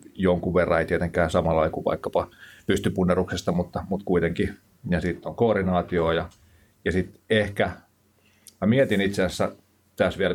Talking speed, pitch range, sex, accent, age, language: 145 wpm, 90-105 Hz, male, native, 30-49, Finnish